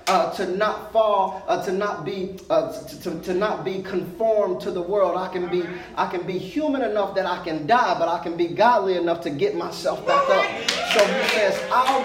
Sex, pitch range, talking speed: male, 200-255 Hz, 225 wpm